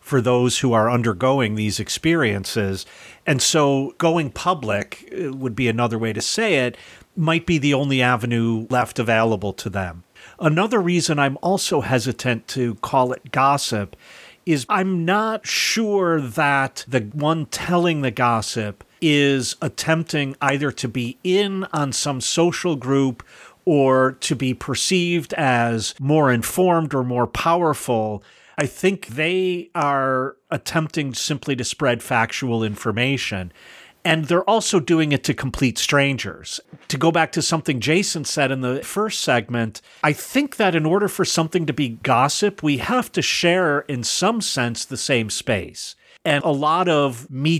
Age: 40-59